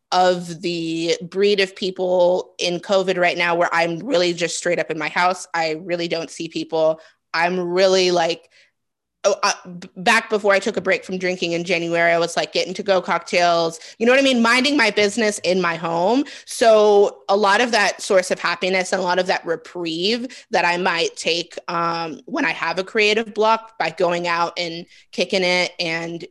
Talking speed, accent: 195 wpm, American